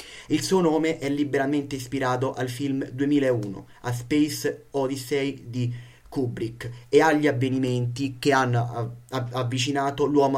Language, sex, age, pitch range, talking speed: Italian, male, 30-49, 125-145 Hz, 120 wpm